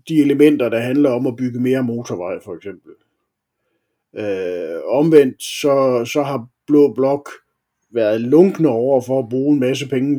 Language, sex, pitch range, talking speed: Danish, male, 115-150 Hz, 155 wpm